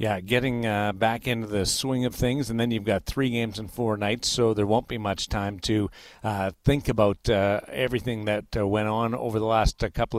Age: 50-69